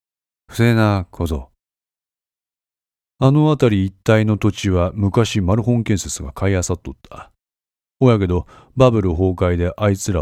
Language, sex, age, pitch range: Japanese, male, 40-59, 85-115 Hz